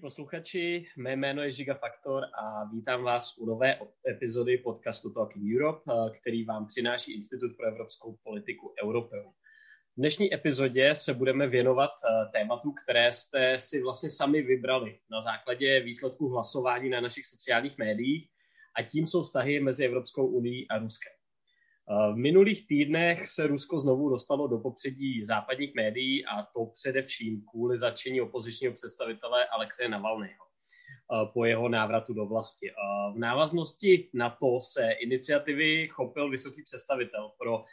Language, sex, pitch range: Czech, male, 120-150 Hz